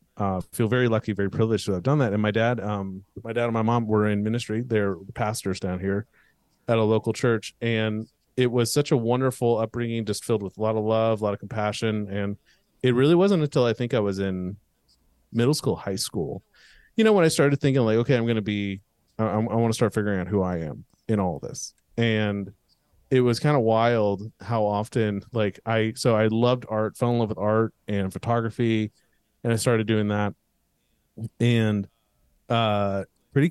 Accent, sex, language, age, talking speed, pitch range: American, male, English, 30-49, 210 wpm, 105-125 Hz